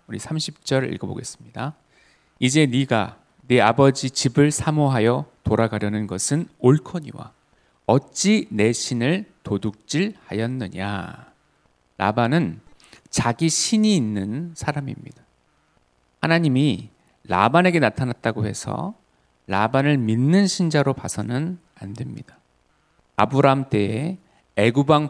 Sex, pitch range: male, 110-165 Hz